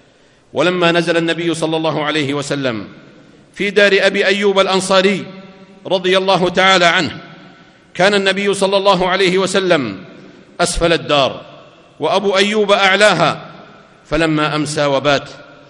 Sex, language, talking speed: male, Arabic, 115 wpm